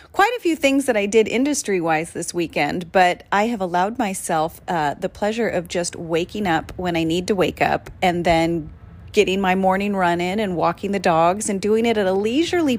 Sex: female